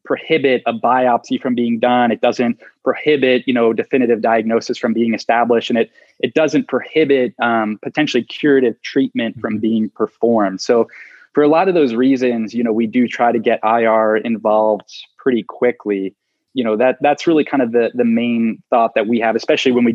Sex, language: male, English